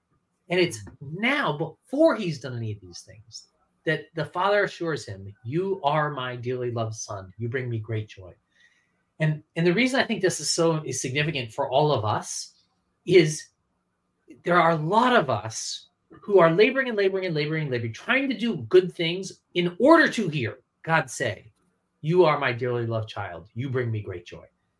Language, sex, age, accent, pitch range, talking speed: English, male, 30-49, American, 120-190 Hz, 190 wpm